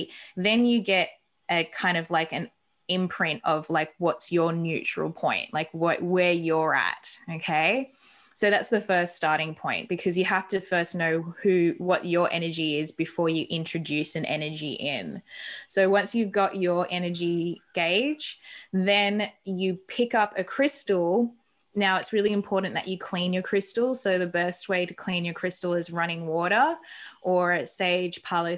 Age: 20-39